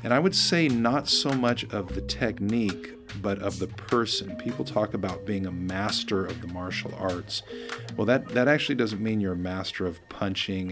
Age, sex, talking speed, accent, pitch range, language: 40-59, male, 195 wpm, American, 95-105 Hz, English